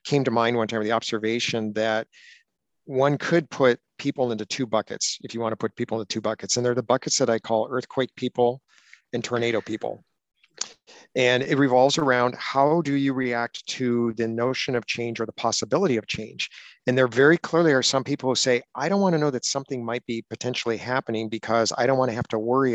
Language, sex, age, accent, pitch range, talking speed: English, male, 50-69, American, 115-135 Hz, 215 wpm